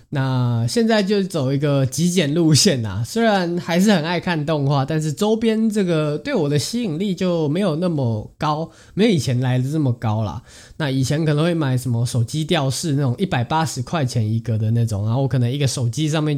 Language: Chinese